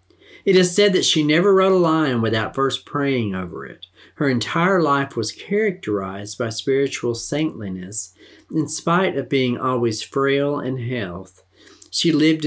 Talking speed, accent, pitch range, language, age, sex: 155 wpm, American, 105-150 Hz, English, 50-69, male